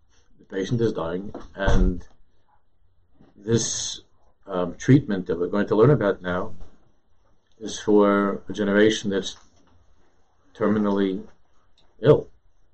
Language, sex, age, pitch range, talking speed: English, male, 50-69, 90-110 Hz, 100 wpm